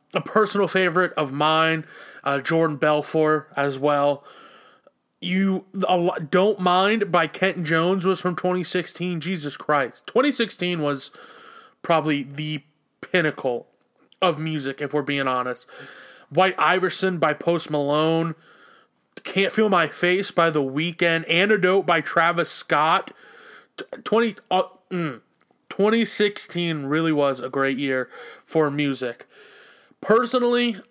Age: 20-39